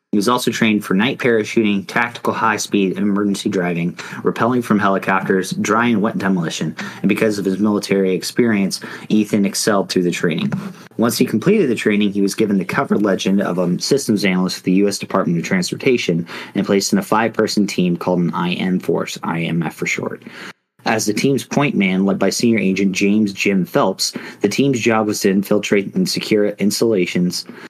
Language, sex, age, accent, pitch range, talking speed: English, male, 30-49, American, 95-110 Hz, 180 wpm